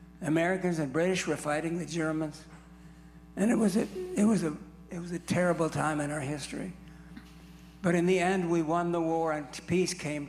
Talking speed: 190 wpm